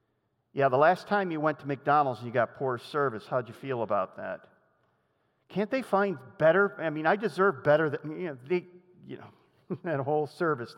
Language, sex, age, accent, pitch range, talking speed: English, male, 50-69, American, 160-215 Hz, 200 wpm